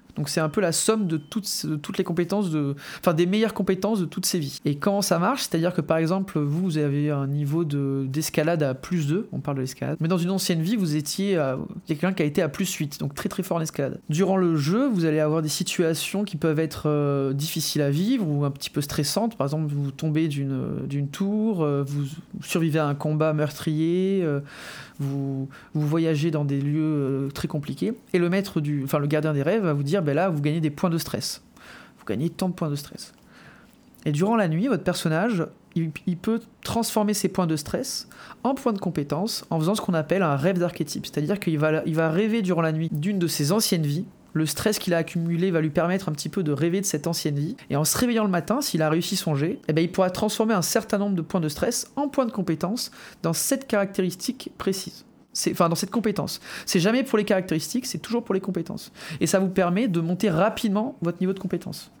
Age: 20-39